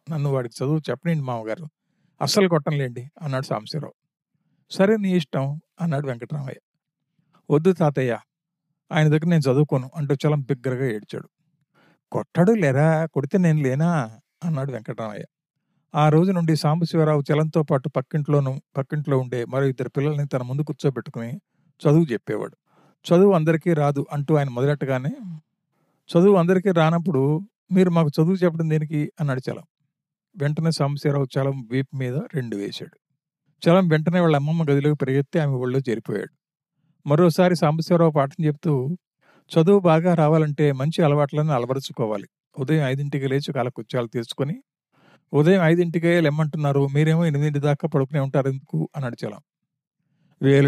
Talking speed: 125 wpm